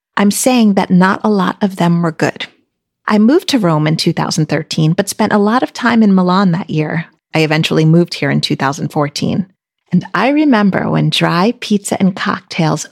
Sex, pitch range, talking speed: female, 165-215 Hz, 185 wpm